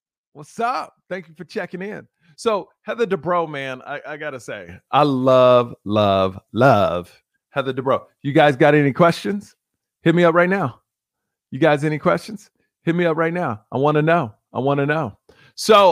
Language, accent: English, American